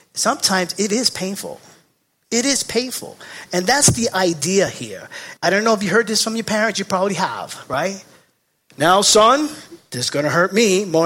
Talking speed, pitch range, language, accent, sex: 190 wpm, 150-220 Hz, English, American, male